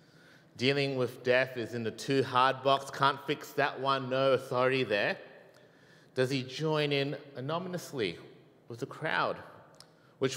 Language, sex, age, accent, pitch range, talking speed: English, male, 30-49, Australian, 120-150 Hz, 145 wpm